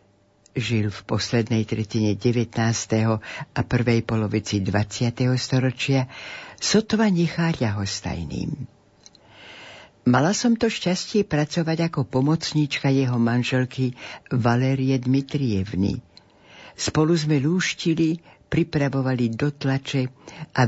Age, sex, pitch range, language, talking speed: 60-79, female, 115-145 Hz, Slovak, 90 wpm